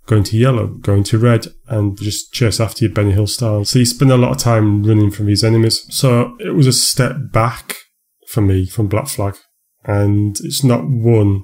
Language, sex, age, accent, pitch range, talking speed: English, male, 30-49, British, 105-130 Hz, 210 wpm